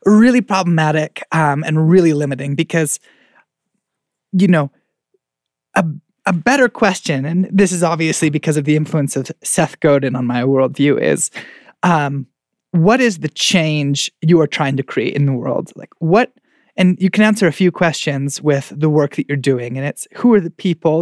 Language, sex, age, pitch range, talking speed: English, male, 20-39, 145-185 Hz, 175 wpm